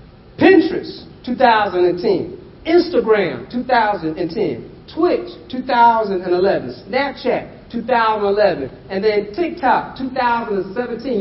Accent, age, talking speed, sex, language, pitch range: American, 40-59, 65 wpm, male, English, 220-285 Hz